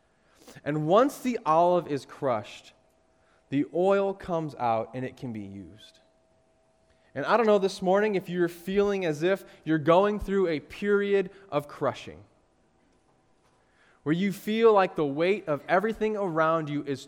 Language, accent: English, American